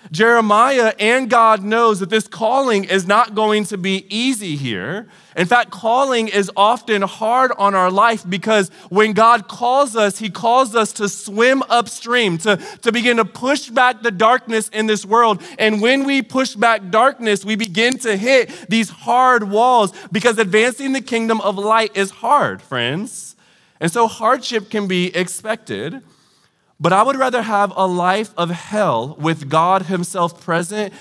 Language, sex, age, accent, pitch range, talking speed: English, male, 30-49, American, 185-235 Hz, 165 wpm